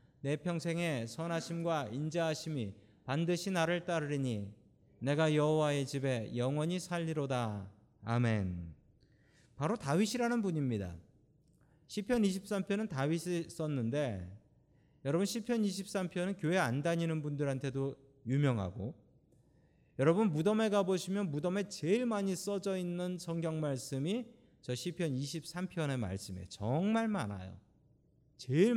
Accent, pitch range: native, 130-190 Hz